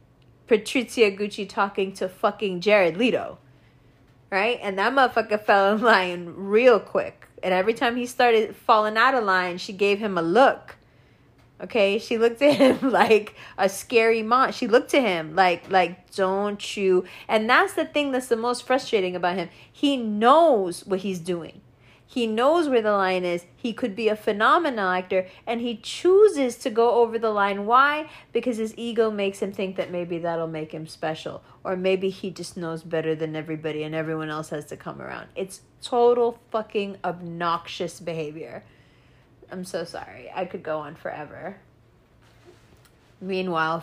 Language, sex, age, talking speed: English, female, 30-49, 170 wpm